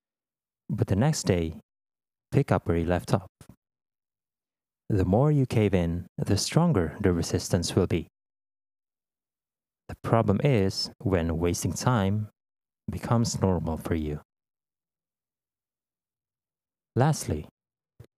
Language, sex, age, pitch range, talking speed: English, male, 30-49, 90-125 Hz, 105 wpm